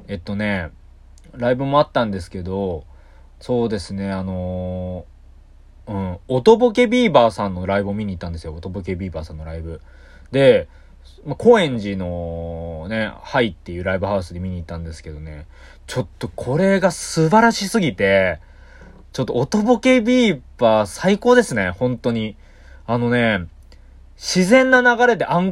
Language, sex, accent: Japanese, male, native